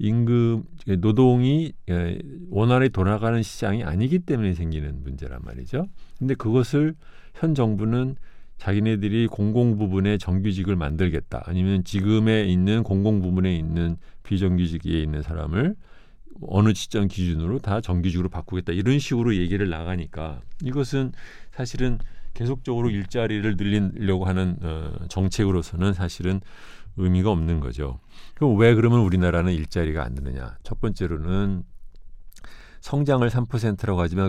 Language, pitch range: Korean, 85-115 Hz